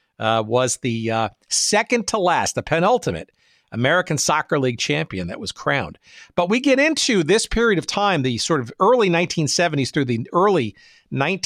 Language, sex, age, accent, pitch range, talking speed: English, male, 50-69, American, 125-175 Hz, 170 wpm